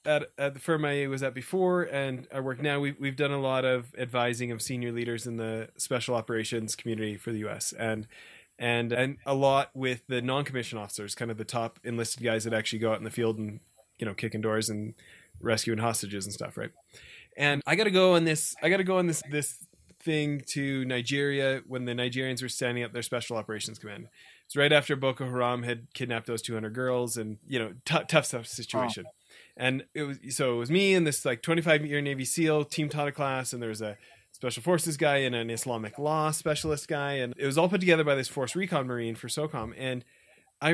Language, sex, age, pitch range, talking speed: English, male, 20-39, 120-155 Hz, 225 wpm